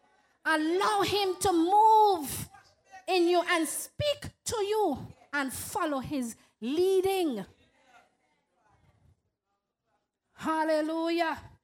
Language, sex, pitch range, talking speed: English, female, 230-320 Hz, 75 wpm